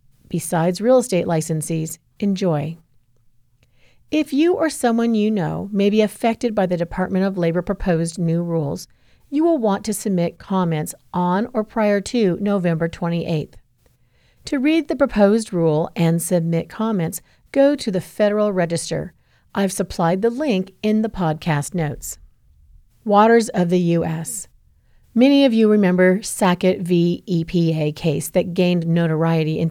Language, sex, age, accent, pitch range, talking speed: English, female, 40-59, American, 165-225 Hz, 145 wpm